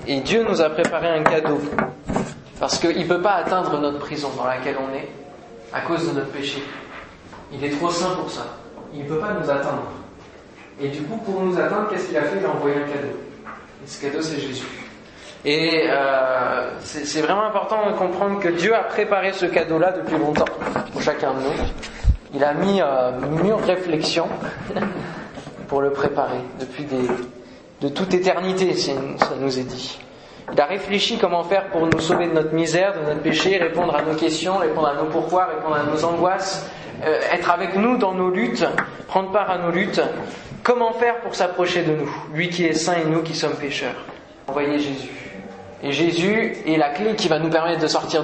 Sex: male